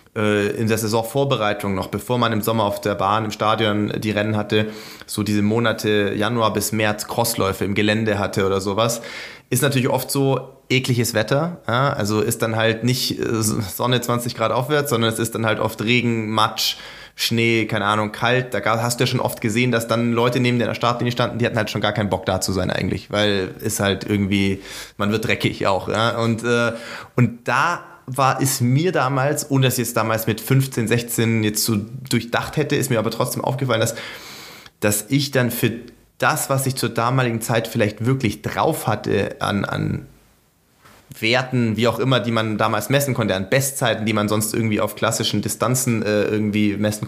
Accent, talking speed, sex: German, 195 wpm, male